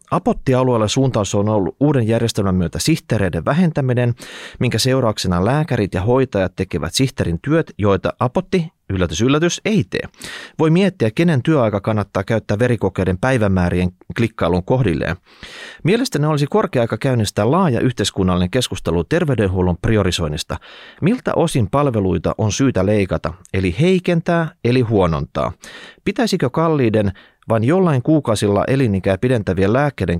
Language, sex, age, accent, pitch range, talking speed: Finnish, male, 30-49, native, 95-145 Hz, 120 wpm